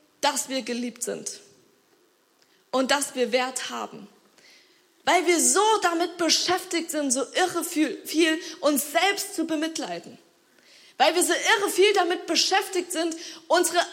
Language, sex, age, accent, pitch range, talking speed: German, female, 20-39, German, 275-375 Hz, 140 wpm